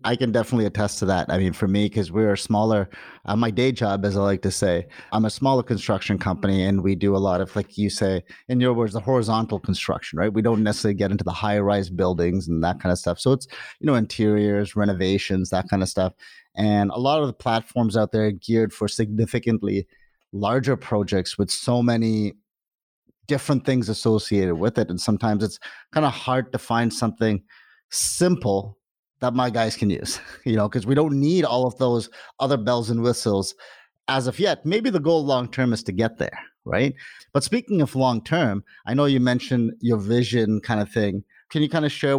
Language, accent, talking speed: English, American, 210 wpm